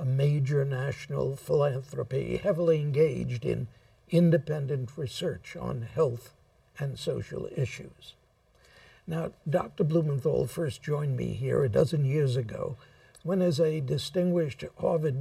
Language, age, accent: English, 60-79, American